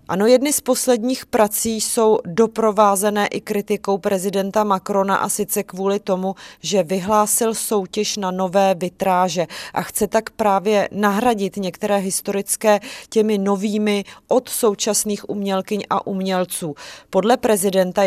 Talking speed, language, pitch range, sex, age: 125 wpm, Czech, 190-220 Hz, female, 20-39